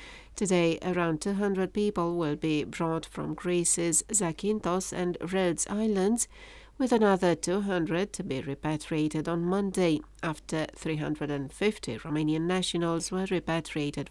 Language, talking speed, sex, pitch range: English, 115 wpm, female, 155-185 Hz